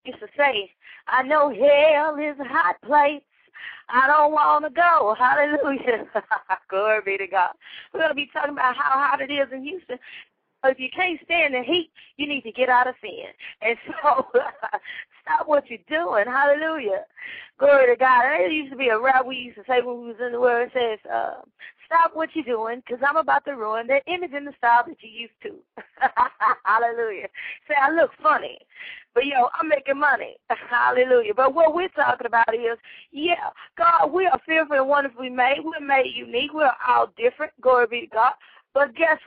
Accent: American